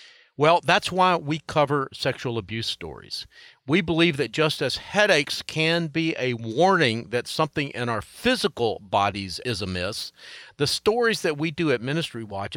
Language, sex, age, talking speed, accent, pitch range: English, male, 50-69, 160 wpm, American, 115-160 Hz